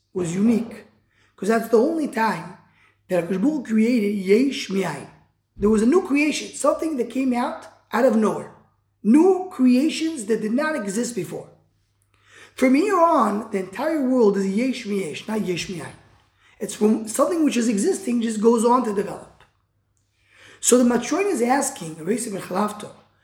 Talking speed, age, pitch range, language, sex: 155 wpm, 20-39, 190-270 Hz, English, male